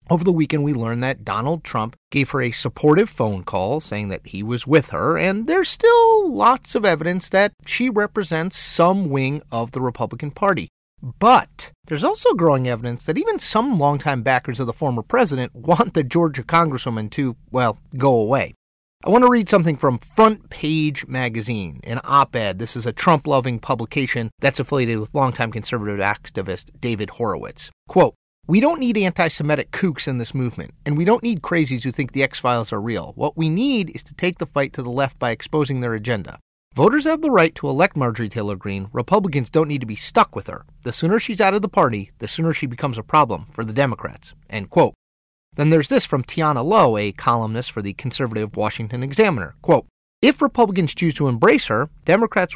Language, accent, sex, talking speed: English, American, male, 195 wpm